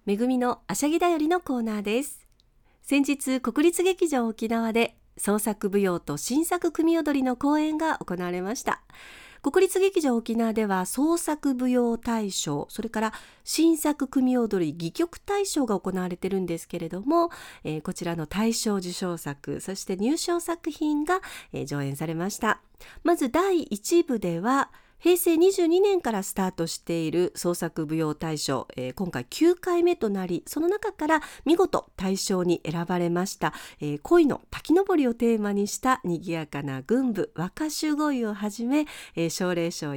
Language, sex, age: Japanese, female, 40-59